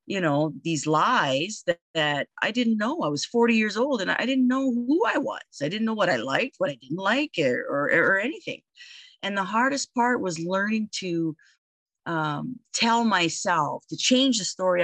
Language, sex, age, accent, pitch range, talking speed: English, female, 40-59, American, 155-220 Hz, 200 wpm